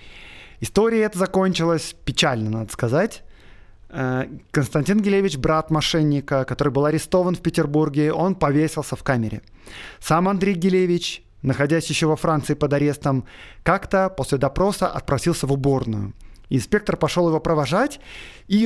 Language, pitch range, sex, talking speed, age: Russian, 145-190 Hz, male, 120 wpm, 20-39